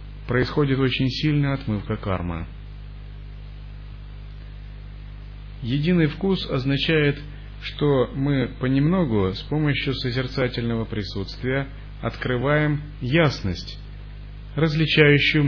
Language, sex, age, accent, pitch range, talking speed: Russian, male, 30-49, native, 115-140 Hz, 70 wpm